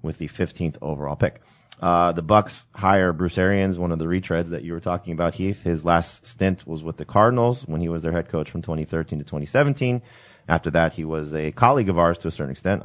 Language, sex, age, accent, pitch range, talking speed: English, male, 30-49, American, 80-95 Hz, 235 wpm